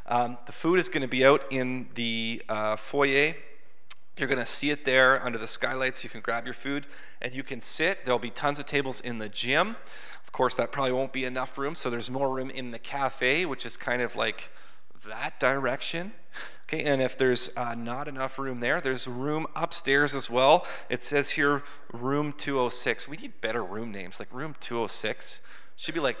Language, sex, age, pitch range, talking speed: English, male, 30-49, 115-140 Hz, 210 wpm